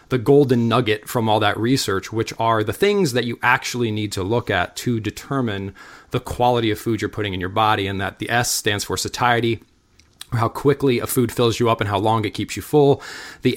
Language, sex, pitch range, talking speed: English, male, 110-135 Hz, 230 wpm